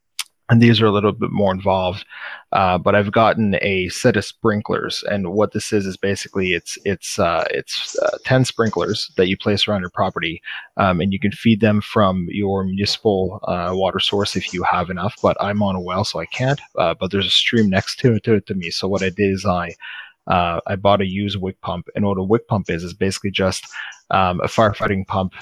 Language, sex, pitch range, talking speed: English, male, 95-105 Hz, 225 wpm